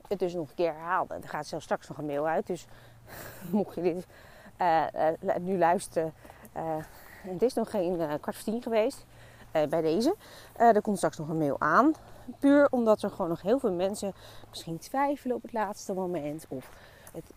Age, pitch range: 30-49, 160-230 Hz